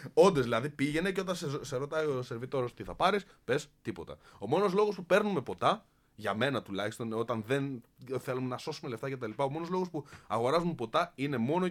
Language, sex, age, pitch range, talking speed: Greek, male, 20-39, 110-170 Hz, 215 wpm